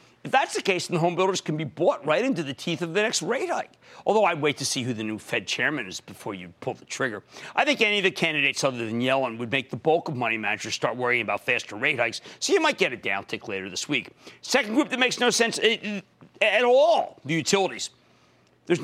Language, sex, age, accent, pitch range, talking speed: English, male, 40-59, American, 135-205 Hz, 250 wpm